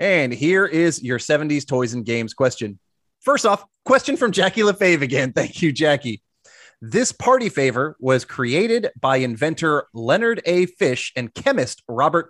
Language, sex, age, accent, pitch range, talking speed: English, male, 30-49, American, 125-190 Hz, 155 wpm